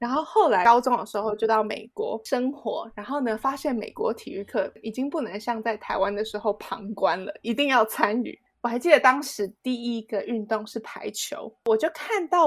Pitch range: 215-275 Hz